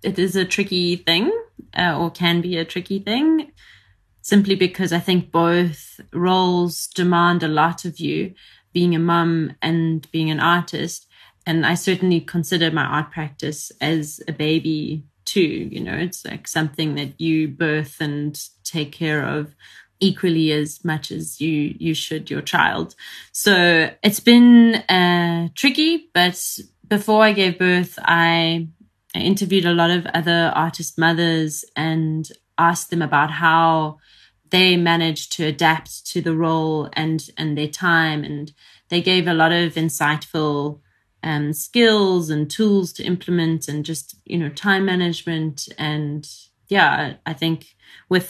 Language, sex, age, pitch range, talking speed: English, female, 30-49, 155-175 Hz, 150 wpm